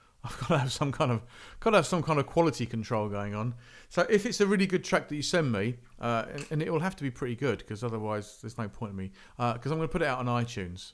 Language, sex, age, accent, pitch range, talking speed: English, male, 40-59, British, 110-155 Hz, 300 wpm